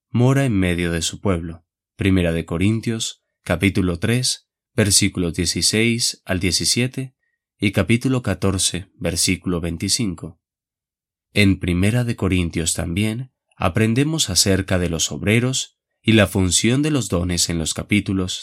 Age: 20-39